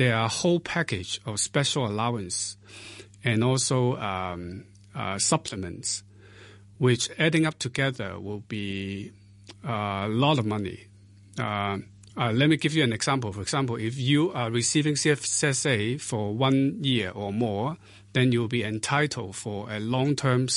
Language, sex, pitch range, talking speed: English, male, 105-130 Hz, 145 wpm